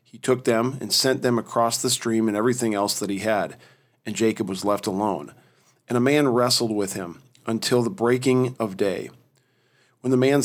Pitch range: 110-130 Hz